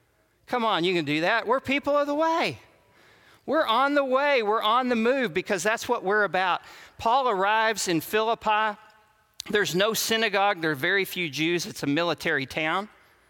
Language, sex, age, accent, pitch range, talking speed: English, male, 40-59, American, 140-210 Hz, 180 wpm